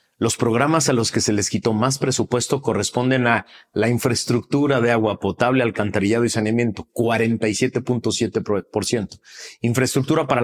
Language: Spanish